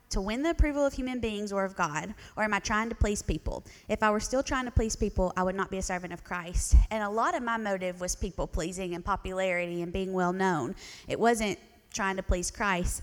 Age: 20-39